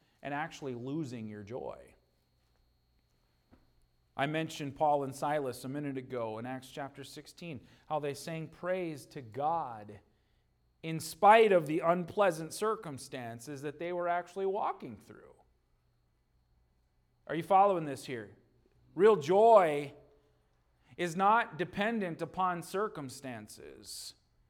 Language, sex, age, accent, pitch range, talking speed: English, male, 40-59, American, 130-195 Hz, 115 wpm